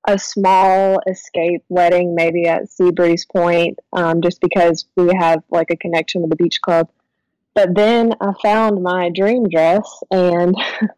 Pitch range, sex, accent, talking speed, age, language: 170-205 Hz, female, American, 155 wpm, 20-39, English